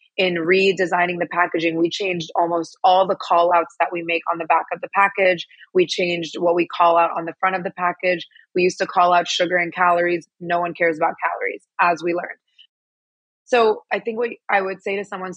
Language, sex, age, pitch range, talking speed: English, female, 20-39, 175-200 Hz, 225 wpm